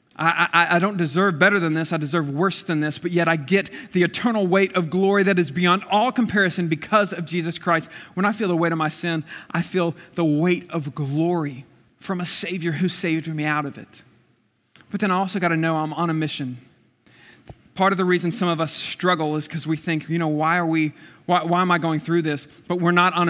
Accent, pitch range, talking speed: American, 165-210 Hz, 240 wpm